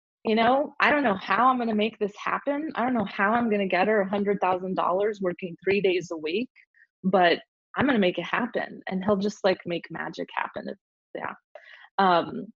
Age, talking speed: 20-39, 205 wpm